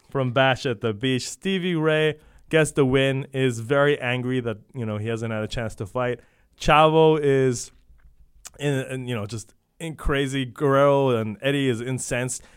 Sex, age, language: male, 20-39, English